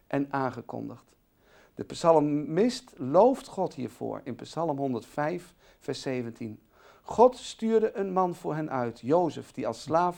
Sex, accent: male, Dutch